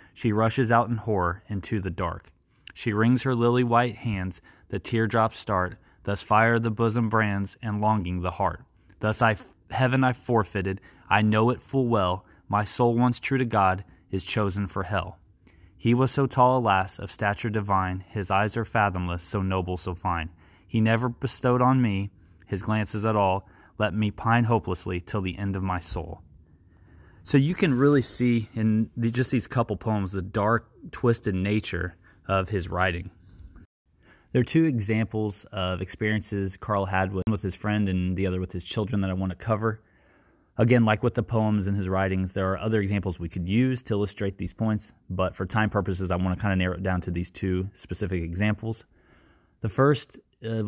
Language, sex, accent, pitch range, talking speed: English, male, American, 95-115 Hz, 190 wpm